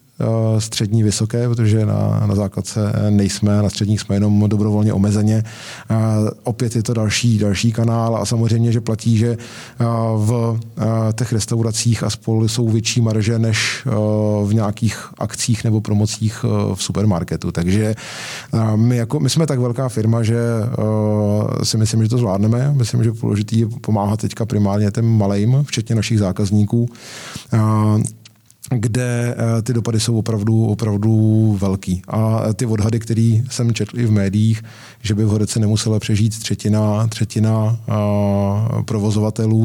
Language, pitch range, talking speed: Czech, 105-115 Hz, 140 wpm